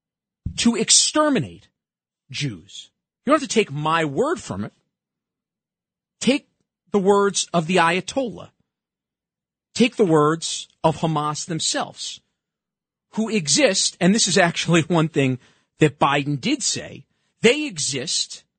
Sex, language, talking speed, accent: male, English, 125 wpm, American